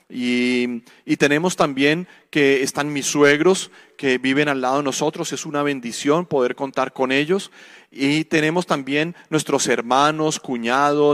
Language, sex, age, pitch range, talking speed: Spanish, male, 40-59, 140-180 Hz, 145 wpm